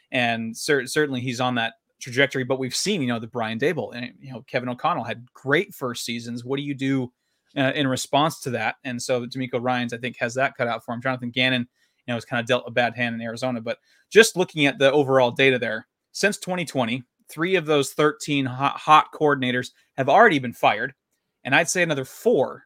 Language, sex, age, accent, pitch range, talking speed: English, male, 30-49, American, 125-150 Hz, 220 wpm